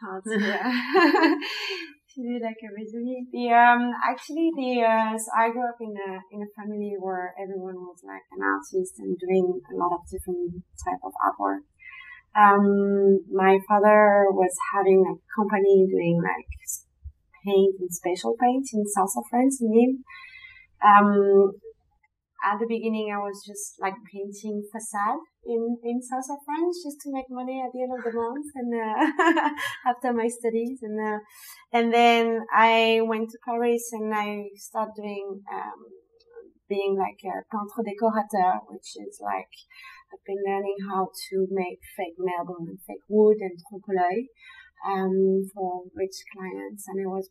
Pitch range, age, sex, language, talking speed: 190-240 Hz, 30-49, female, English, 150 wpm